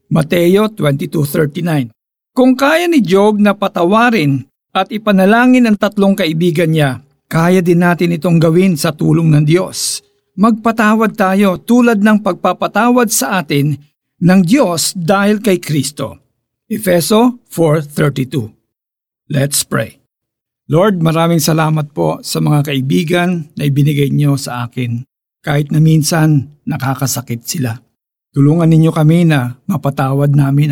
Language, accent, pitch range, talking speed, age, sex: Filipino, native, 135-180 Hz, 120 wpm, 50-69, male